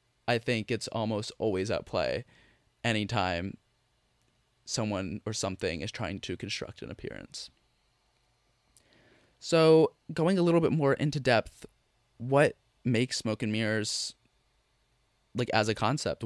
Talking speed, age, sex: 125 wpm, 20-39, male